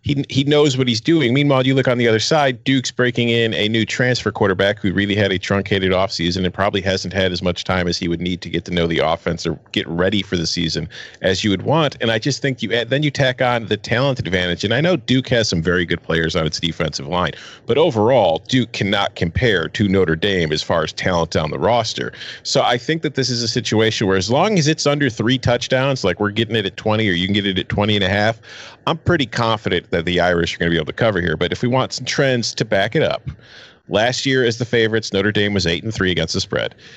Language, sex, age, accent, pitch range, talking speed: English, male, 40-59, American, 95-125 Hz, 265 wpm